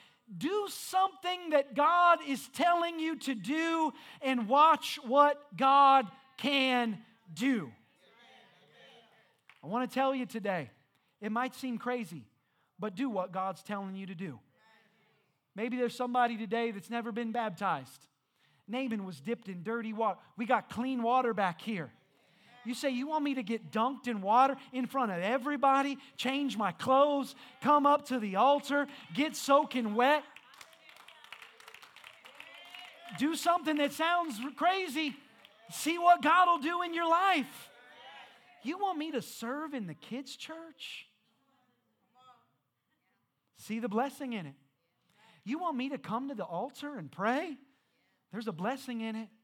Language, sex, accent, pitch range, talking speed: English, male, American, 220-285 Hz, 145 wpm